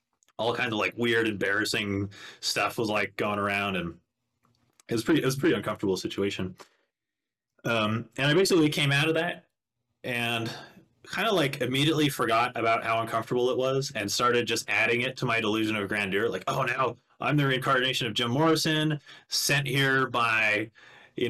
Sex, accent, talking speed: male, American, 180 wpm